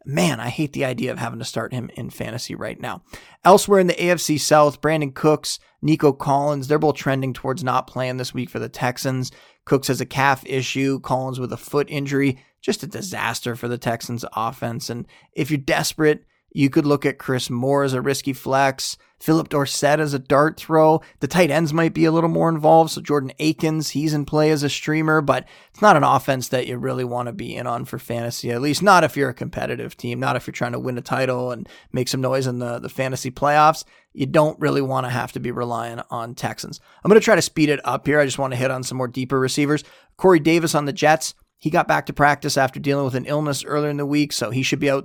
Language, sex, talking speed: English, male, 245 wpm